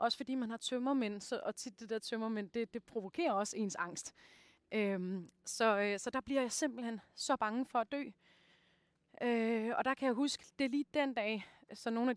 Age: 30-49